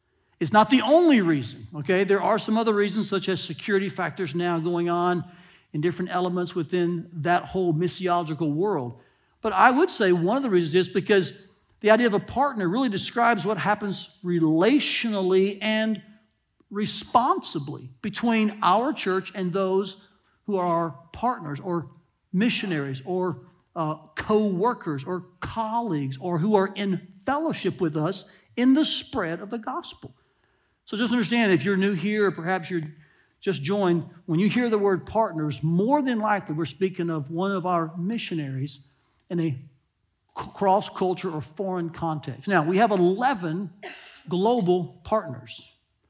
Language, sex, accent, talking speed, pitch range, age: English, male, American, 150 wpm, 170-210 Hz, 60-79